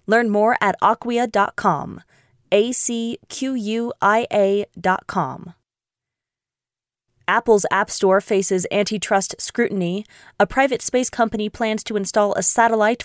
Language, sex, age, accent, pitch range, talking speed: English, female, 20-39, American, 195-230 Hz, 100 wpm